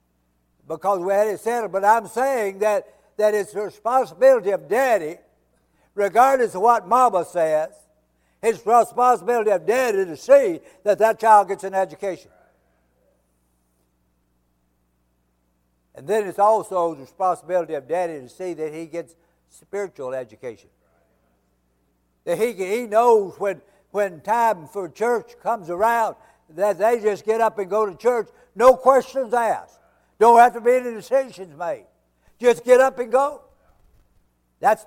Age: 60-79